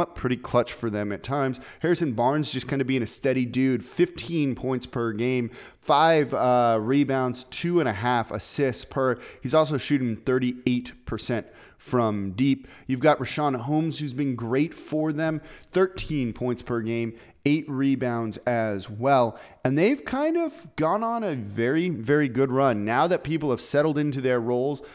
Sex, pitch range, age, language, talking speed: male, 120-150 Hz, 30-49, English, 170 wpm